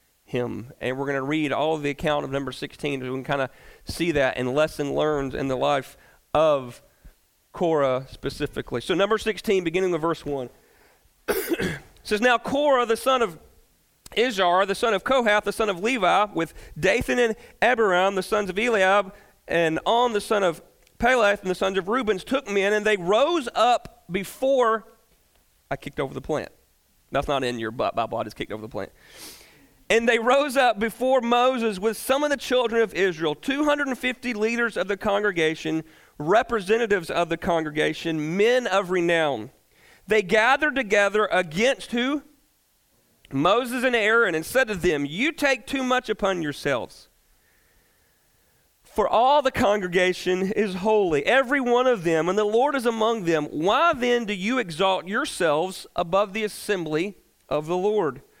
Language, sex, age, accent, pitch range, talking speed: English, male, 40-59, American, 165-240 Hz, 170 wpm